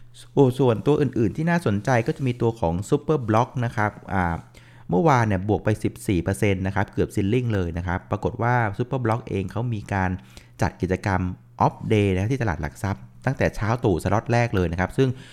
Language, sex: Thai, male